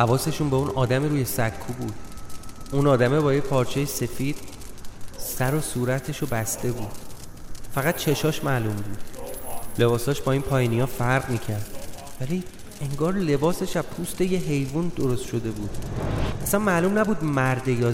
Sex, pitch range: male, 115-150 Hz